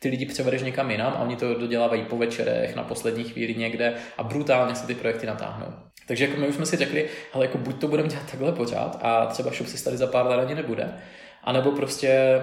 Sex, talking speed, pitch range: male, 230 wpm, 120-140 Hz